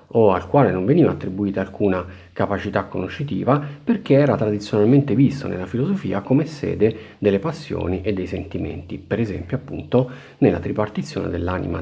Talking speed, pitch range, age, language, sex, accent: 140 wpm, 95-130 Hz, 40-59, Italian, male, native